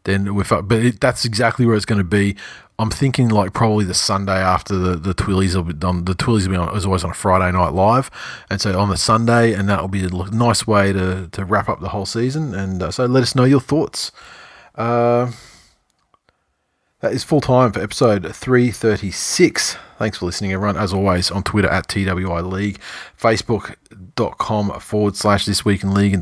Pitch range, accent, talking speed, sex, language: 95-115 Hz, Australian, 205 wpm, male, English